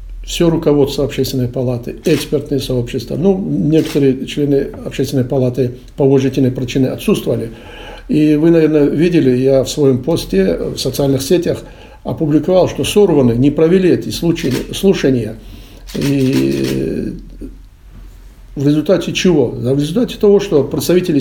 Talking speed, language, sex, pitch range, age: 120 wpm, Russian, male, 130-165 Hz, 60-79